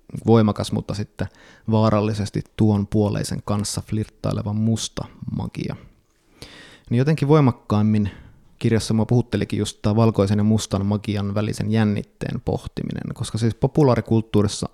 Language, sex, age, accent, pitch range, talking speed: Finnish, male, 20-39, native, 105-120 Hz, 115 wpm